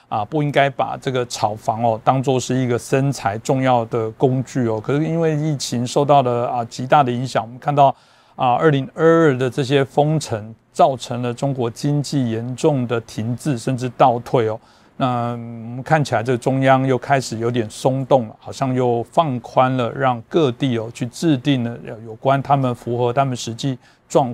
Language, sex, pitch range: Chinese, male, 120-140 Hz